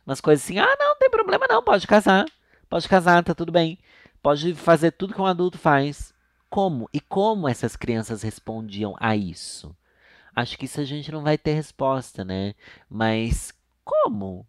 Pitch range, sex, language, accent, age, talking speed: 105-140 Hz, male, Portuguese, Brazilian, 30-49, 180 wpm